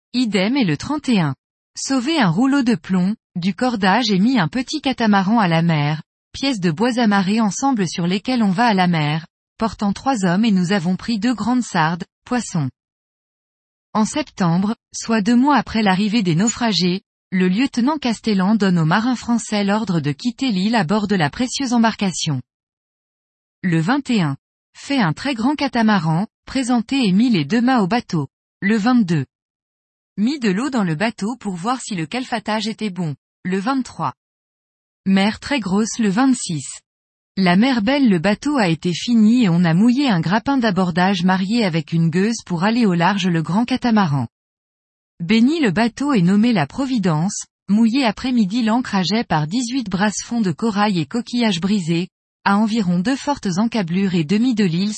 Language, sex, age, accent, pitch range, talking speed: French, female, 20-39, French, 180-240 Hz, 175 wpm